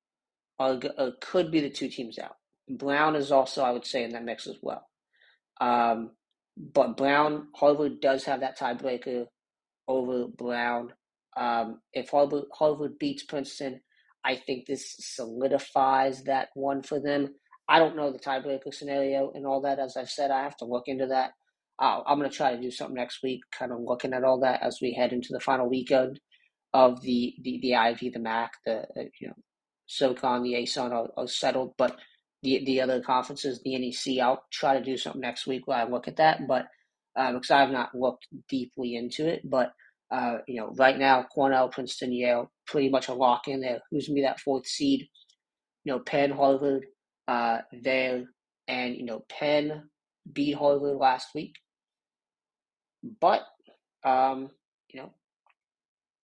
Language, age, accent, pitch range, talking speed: English, 30-49, American, 125-140 Hz, 175 wpm